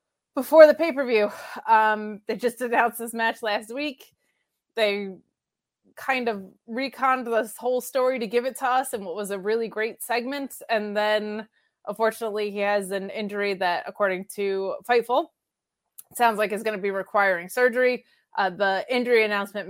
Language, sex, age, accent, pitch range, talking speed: English, female, 20-39, American, 200-240 Hz, 160 wpm